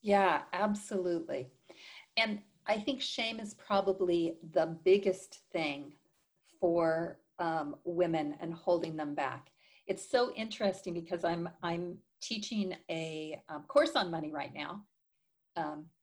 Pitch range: 170-210 Hz